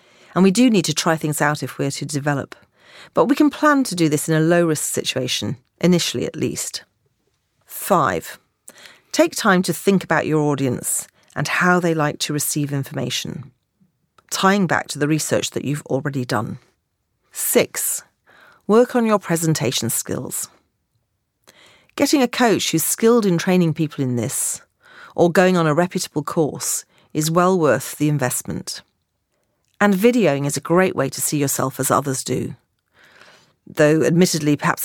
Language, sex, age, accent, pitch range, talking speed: English, female, 40-59, British, 145-185 Hz, 160 wpm